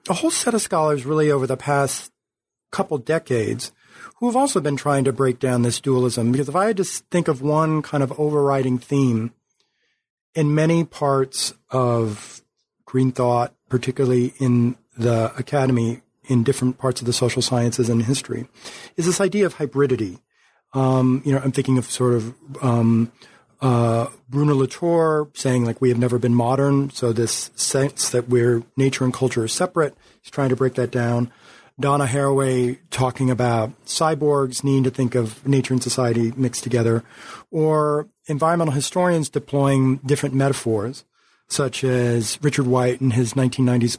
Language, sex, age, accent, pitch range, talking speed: English, male, 40-59, American, 125-145 Hz, 160 wpm